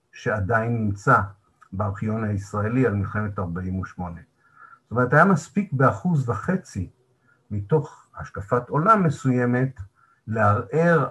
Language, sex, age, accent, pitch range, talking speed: Hebrew, male, 50-69, native, 95-130 Hz, 95 wpm